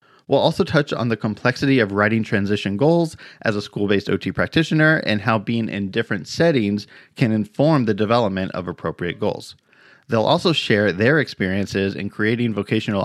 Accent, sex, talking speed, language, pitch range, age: American, male, 165 wpm, English, 105-135 Hz, 30-49